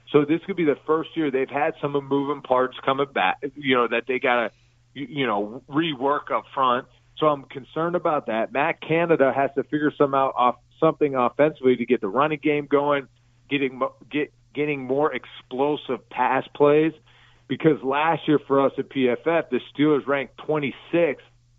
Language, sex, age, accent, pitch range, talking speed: English, male, 40-59, American, 120-145 Hz, 180 wpm